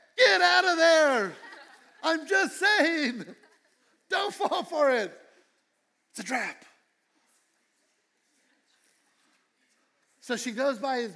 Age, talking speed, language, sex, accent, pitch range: 60-79, 100 wpm, English, male, American, 200-310 Hz